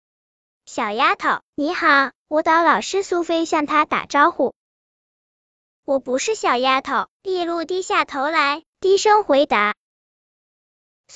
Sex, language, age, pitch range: male, Chinese, 10-29, 275-355 Hz